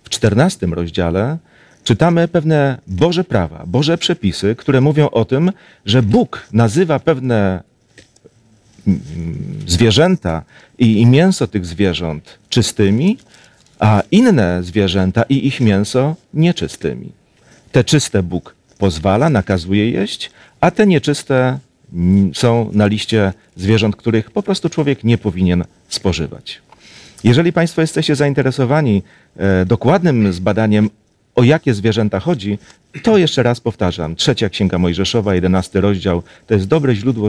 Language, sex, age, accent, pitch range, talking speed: Polish, male, 40-59, native, 100-150 Hz, 115 wpm